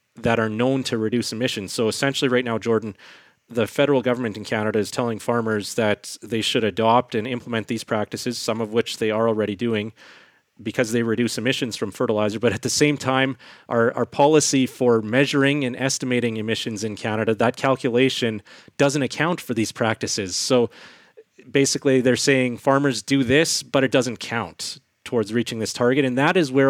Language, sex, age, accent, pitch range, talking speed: English, male, 30-49, American, 105-130 Hz, 180 wpm